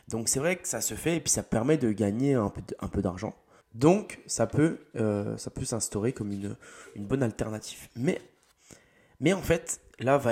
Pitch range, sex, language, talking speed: 100-130 Hz, male, French, 200 wpm